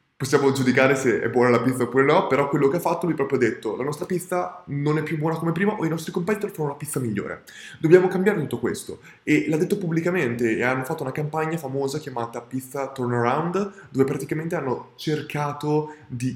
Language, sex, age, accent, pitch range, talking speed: Italian, male, 20-39, native, 120-150 Hz, 215 wpm